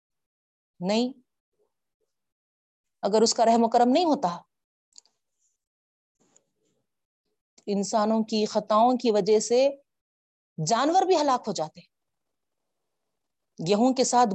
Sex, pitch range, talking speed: female, 175-240 Hz, 95 wpm